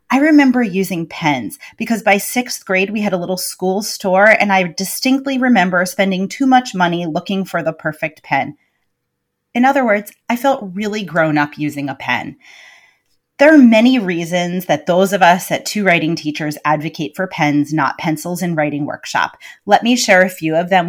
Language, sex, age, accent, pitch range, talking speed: English, female, 30-49, American, 165-240 Hz, 185 wpm